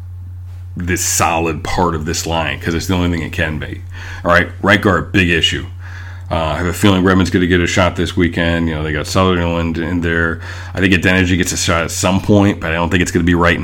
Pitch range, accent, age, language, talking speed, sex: 85-95 Hz, American, 40-59, English, 245 wpm, male